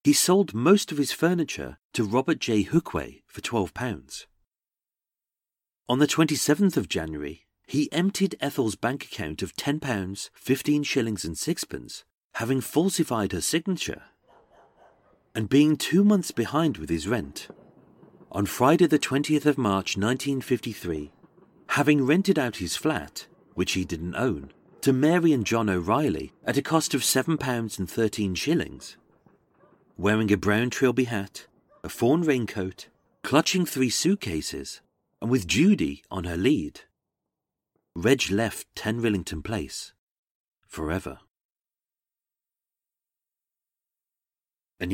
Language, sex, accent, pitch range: English, male, British, 95-145 Hz